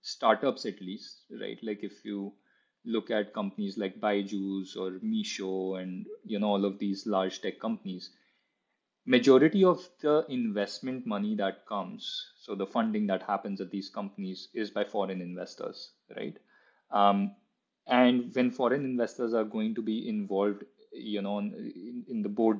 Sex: male